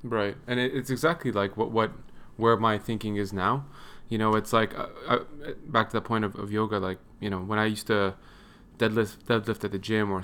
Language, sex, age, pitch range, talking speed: English, male, 20-39, 105-125 Hz, 215 wpm